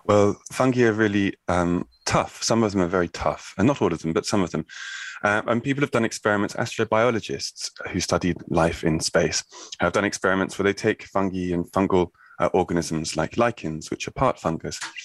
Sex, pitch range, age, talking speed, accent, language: male, 90-110 Hz, 20-39, 200 wpm, British, English